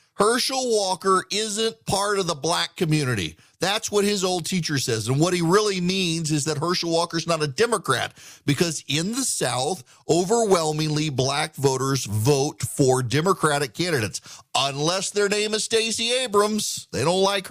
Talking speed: 160 wpm